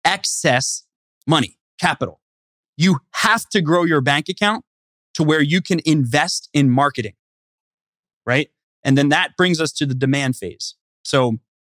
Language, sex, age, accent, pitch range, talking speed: English, male, 30-49, American, 135-180 Hz, 145 wpm